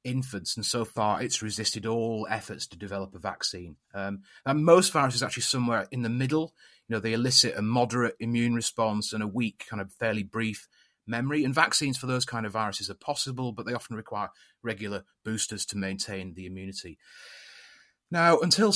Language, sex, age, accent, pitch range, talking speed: English, male, 30-49, British, 105-130 Hz, 185 wpm